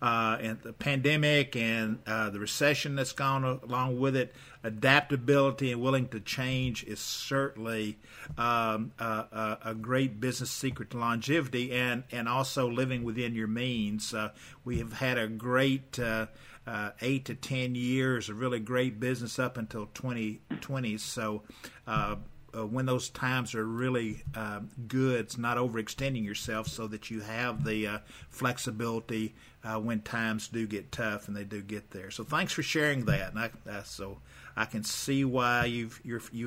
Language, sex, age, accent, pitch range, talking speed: English, male, 50-69, American, 110-130 Hz, 170 wpm